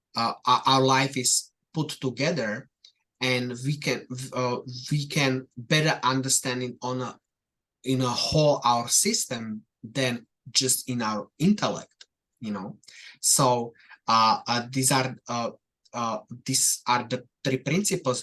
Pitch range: 125-145 Hz